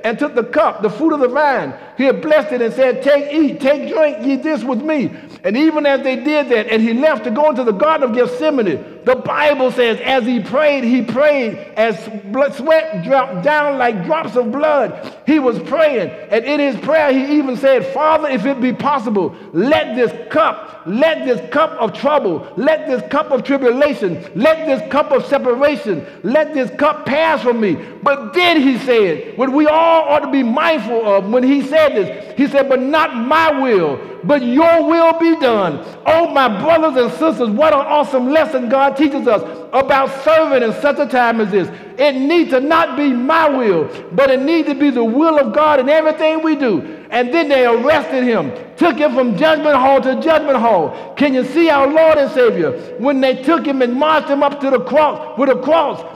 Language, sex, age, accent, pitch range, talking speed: English, male, 60-79, American, 255-310 Hz, 210 wpm